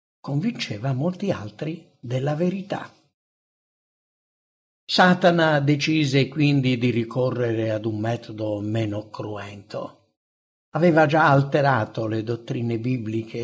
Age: 60-79